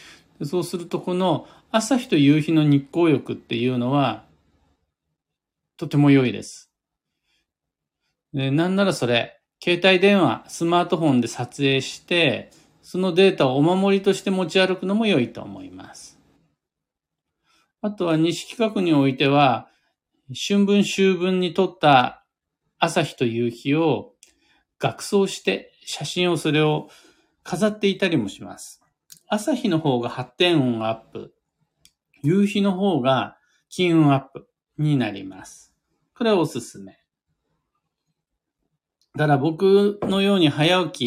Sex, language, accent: male, Japanese, native